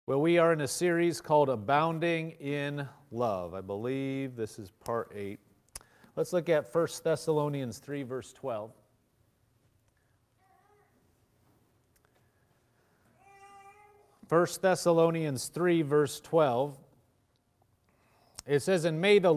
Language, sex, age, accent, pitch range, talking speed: English, male, 40-59, American, 125-170 Hz, 105 wpm